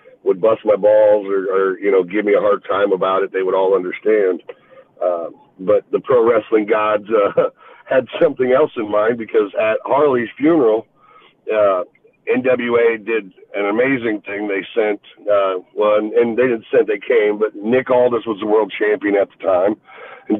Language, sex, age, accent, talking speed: English, male, 50-69, American, 190 wpm